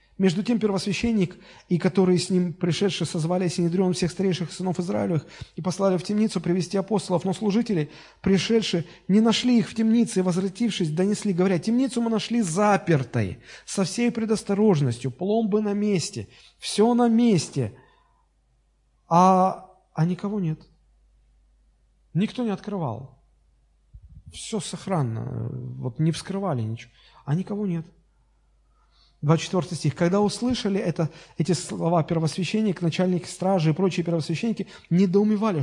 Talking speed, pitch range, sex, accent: 125 wpm, 150-200 Hz, male, native